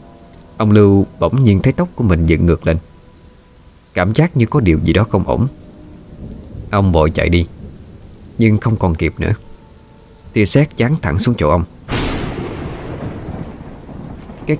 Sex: male